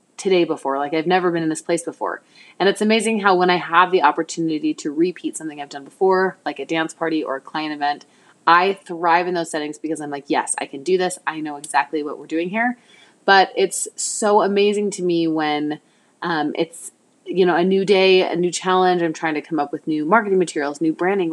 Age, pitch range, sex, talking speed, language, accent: 20-39, 160-205 Hz, female, 230 wpm, English, American